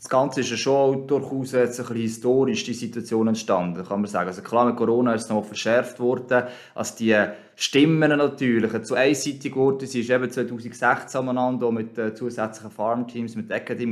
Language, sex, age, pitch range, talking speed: German, male, 20-39, 115-140 Hz, 180 wpm